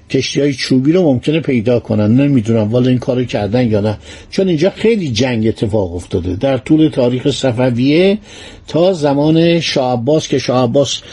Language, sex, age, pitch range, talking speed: Persian, male, 50-69, 130-170 Hz, 150 wpm